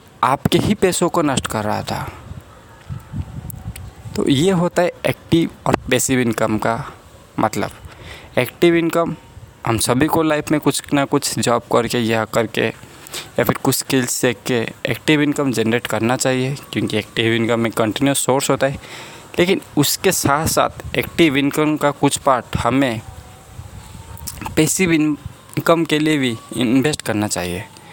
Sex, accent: male, native